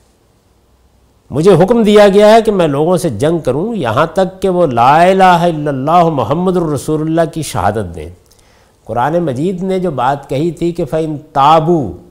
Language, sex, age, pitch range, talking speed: Urdu, male, 50-69, 105-165 Hz, 175 wpm